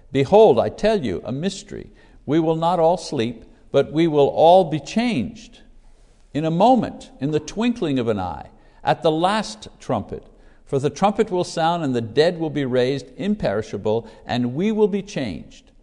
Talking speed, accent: 180 wpm, American